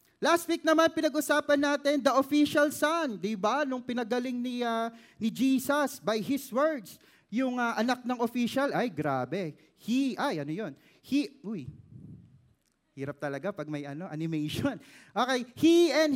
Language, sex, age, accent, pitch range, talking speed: Filipino, male, 20-39, native, 165-265 Hz, 150 wpm